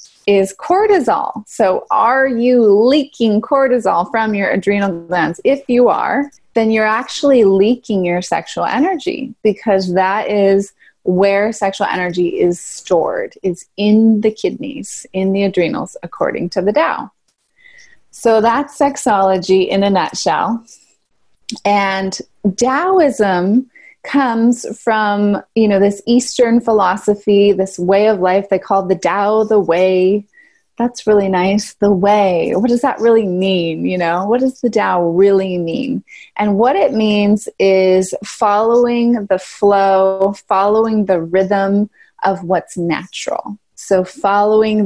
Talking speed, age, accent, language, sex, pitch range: 130 wpm, 20-39, American, English, female, 190-240 Hz